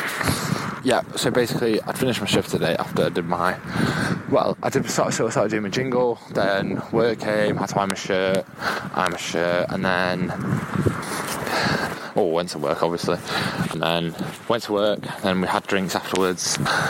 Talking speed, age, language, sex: 180 wpm, 20-39, English, male